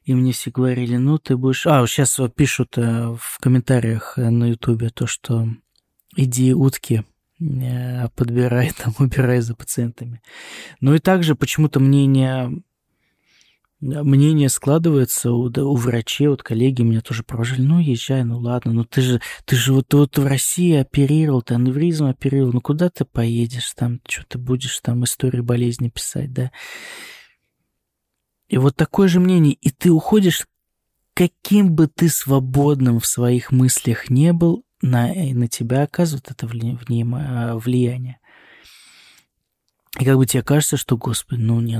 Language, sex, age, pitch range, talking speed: Russian, male, 20-39, 120-145 Hz, 145 wpm